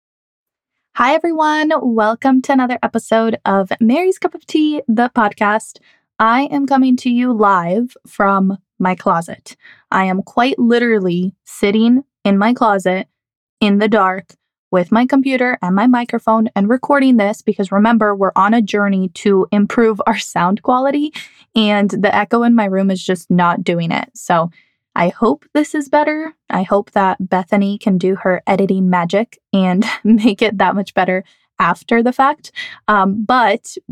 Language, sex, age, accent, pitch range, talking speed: English, female, 10-29, American, 195-245 Hz, 160 wpm